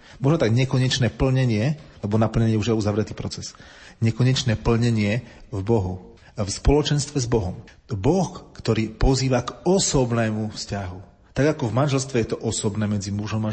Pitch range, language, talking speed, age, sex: 105-120 Hz, Slovak, 160 wpm, 40-59, male